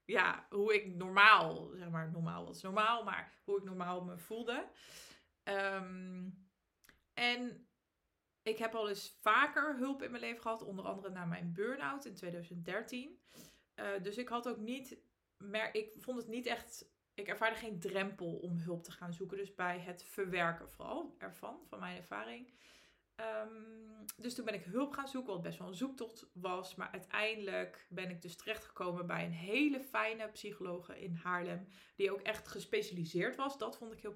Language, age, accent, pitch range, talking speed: Dutch, 20-39, Dutch, 180-220 Hz, 170 wpm